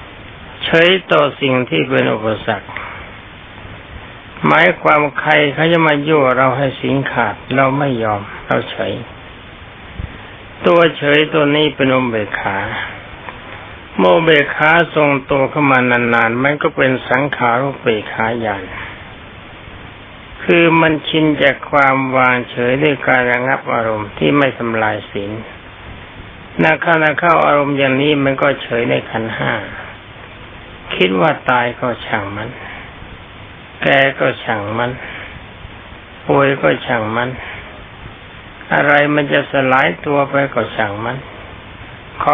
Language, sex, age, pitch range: Thai, male, 60-79, 105-140 Hz